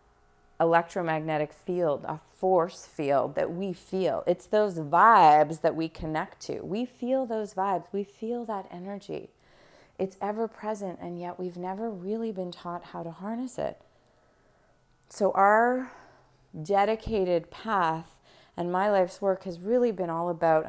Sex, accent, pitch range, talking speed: female, American, 175-210 Hz, 145 wpm